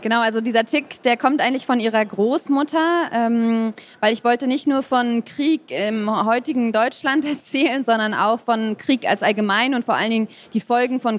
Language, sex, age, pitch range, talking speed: German, female, 20-39, 205-240 Hz, 180 wpm